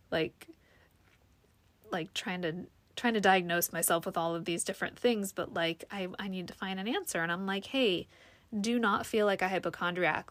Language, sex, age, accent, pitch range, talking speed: English, female, 20-39, American, 175-220 Hz, 190 wpm